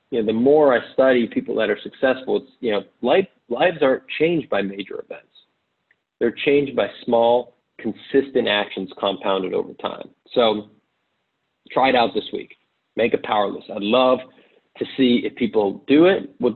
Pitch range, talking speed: 105-120 Hz, 170 wpm